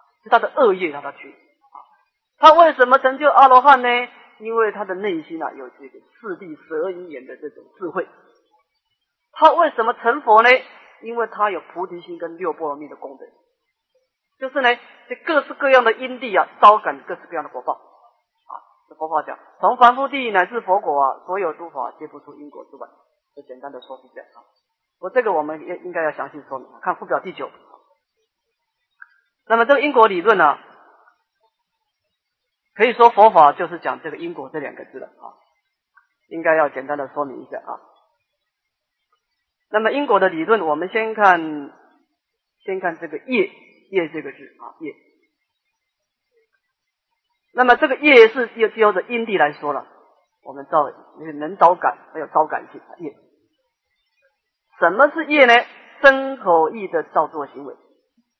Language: Chinese